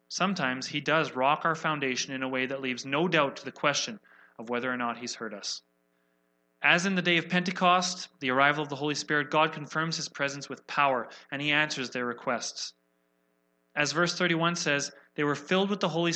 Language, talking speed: English, 210 wpm